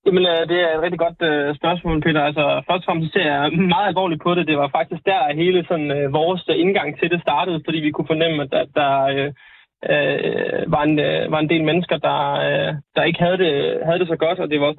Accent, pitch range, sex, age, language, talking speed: native, 150-175 Hz, male, 20-39, Danish, 250 wpm